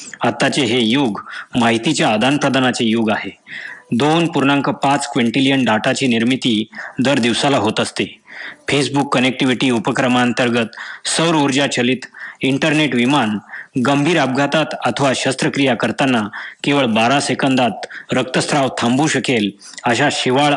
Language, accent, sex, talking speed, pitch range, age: Marathi, native, male, 105 wpm, 120-145 Hz, 20-39